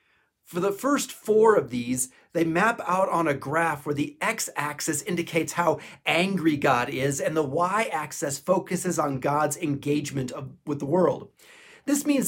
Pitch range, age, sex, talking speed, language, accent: 140-185 Hz, 40-59, male, 155 wpm, English, American